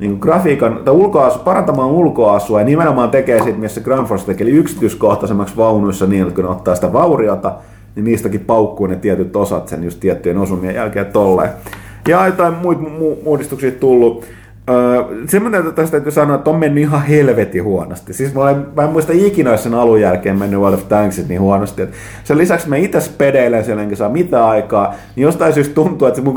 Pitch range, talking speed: 95-135 Hz, 190 wpm